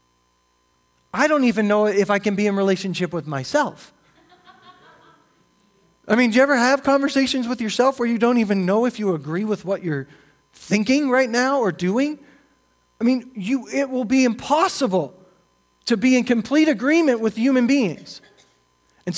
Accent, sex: American, male